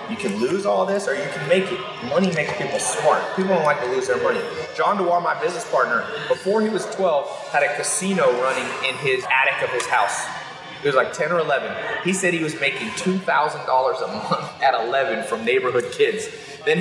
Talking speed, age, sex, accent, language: 215 wpm, 30-49, male, American, English